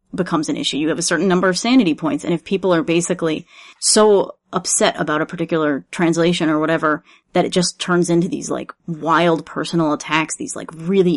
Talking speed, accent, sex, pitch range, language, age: 200 wpm, American, female, 160-190 Hz, English, 30-49